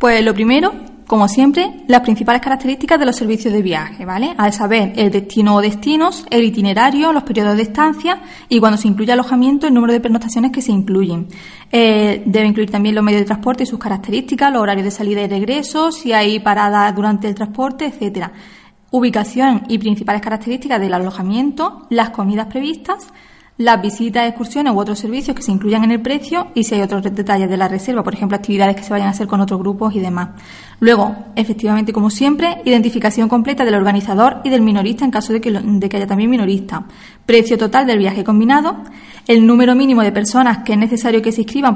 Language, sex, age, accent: Spanish, female, 20-39, Spanish